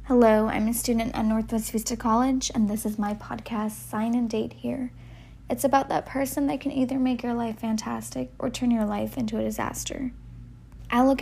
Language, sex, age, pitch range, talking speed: English, female, 20-39, 195-235 Hz, 200 wpm